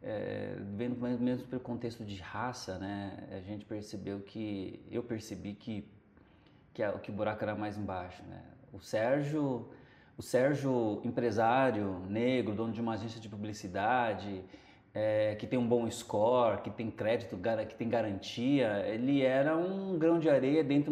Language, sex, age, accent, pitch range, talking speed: Portuguese, male, 20-39, Brazilian, 110-145 Hz, 155 wpm